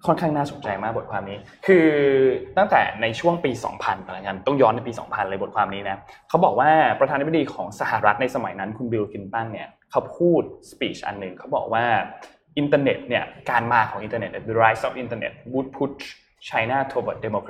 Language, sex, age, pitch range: Thai, male, 20-39, 110-150 Hz